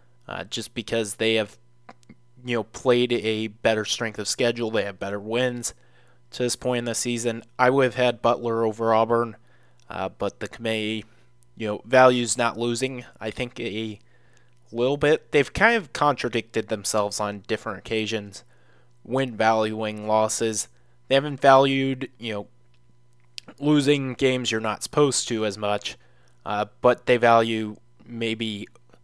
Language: English